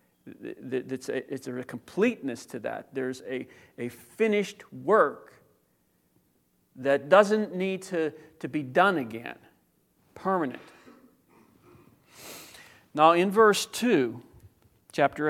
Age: 50-69